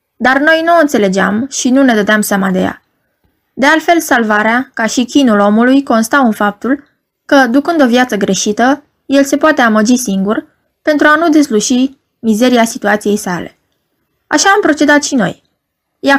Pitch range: 205-275 Hz